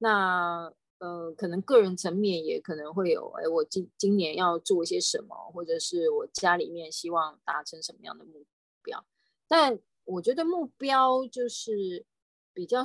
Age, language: 20-39, Chinese